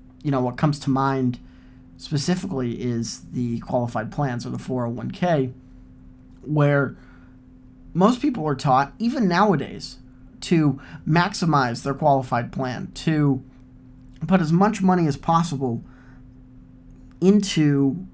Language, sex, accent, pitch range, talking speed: English, male, American, 130-155 Hz, 110 wpm